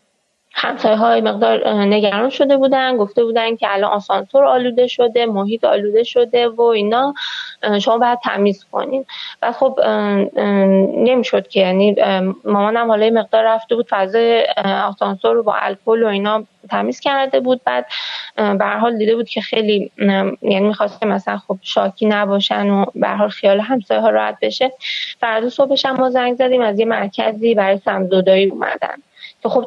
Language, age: Persian, 20-39